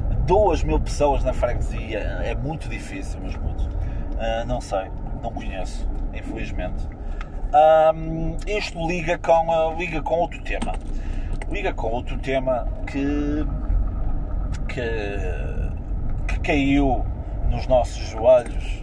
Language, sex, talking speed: Portuguese, male, 100 wpm